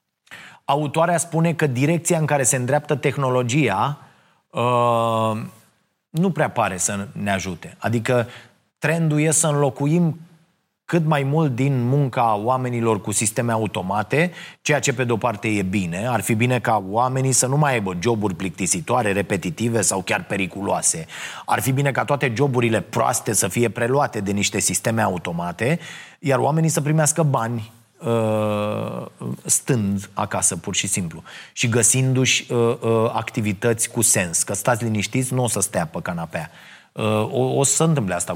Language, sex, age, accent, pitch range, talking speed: Romanian, male, 30-49, native, 110-140 Hz, 150 wpm